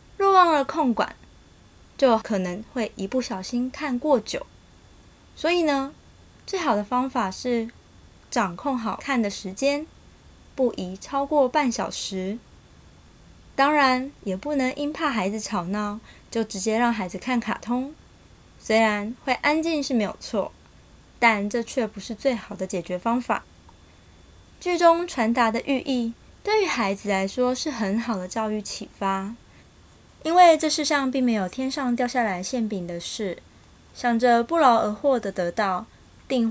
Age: 20-39